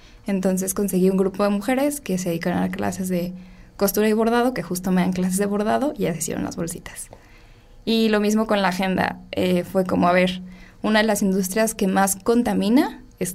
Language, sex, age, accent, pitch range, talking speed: Spanish, female, 10-29, Mexican, 180-220 Hz, 205 wpm